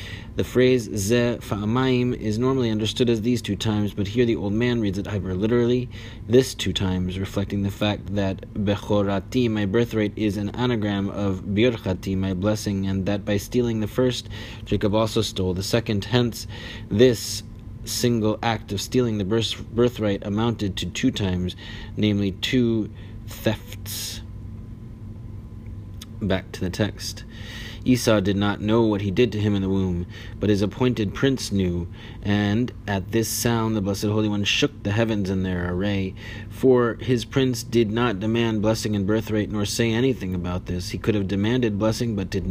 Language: English